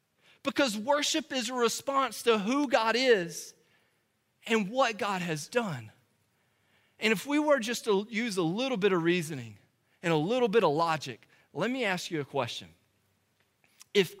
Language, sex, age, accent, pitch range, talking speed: English, male, 40-59, American, 120-170 Hz, 165 wpm